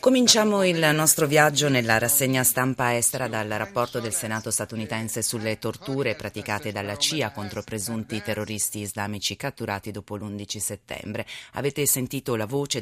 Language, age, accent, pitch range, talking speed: Italian, 30-49, native, 105-125 Hz, 140 wpm